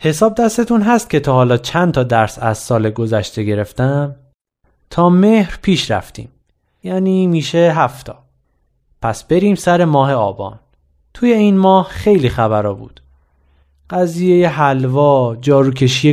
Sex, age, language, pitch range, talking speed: male, 30-49, Persian, 115-180 Hz, 125 wpm